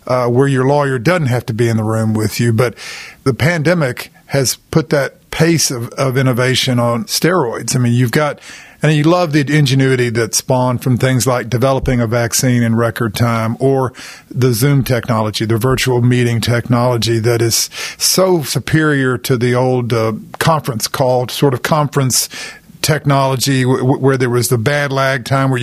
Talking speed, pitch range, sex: 175 wpm, 120-135 Hz, male